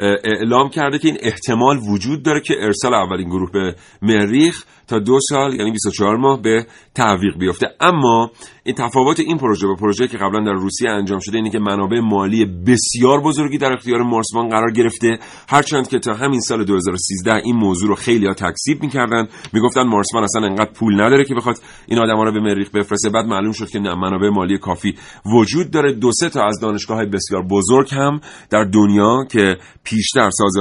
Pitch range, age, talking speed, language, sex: 95-125 Hz, 40-59, 185 wpm, Persian, male